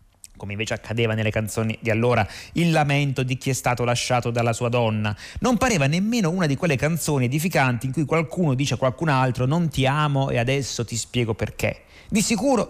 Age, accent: 30-49, native